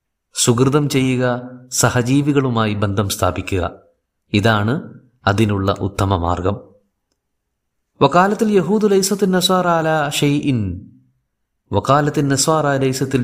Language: Malayalam